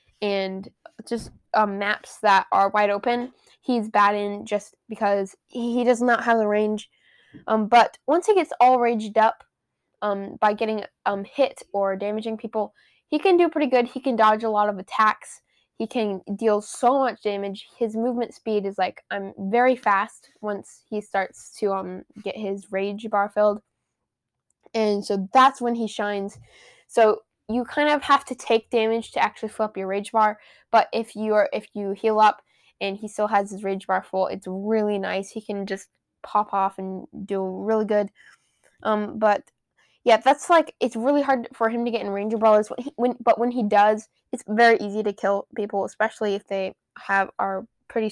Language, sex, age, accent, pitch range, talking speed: English, female, 10-29, American, 200-230 Hz, 190 wpm